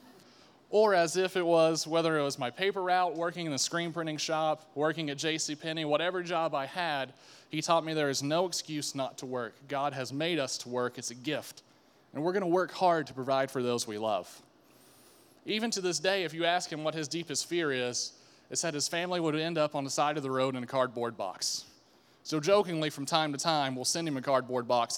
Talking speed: 235 wpm